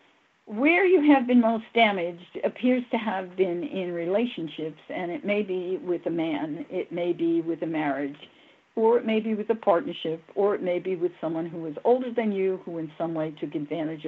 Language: English